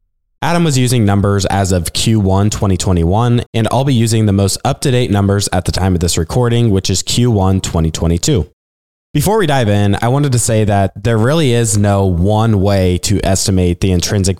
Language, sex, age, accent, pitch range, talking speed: English, male, 20-39, American, 90-115 Hz, 190 wpm